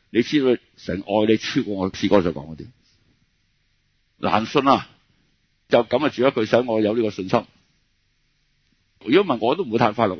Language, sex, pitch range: Chinese, male, 100-130 Hz